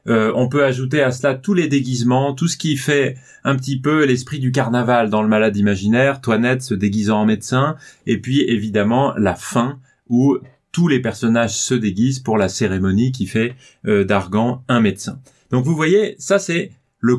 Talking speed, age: 190 wpm, 30-49